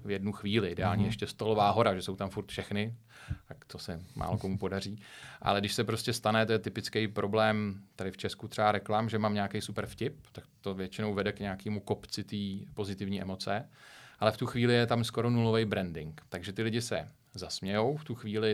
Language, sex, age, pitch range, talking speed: Czech, male, 30-49, 100-115 Hz, 205 wpm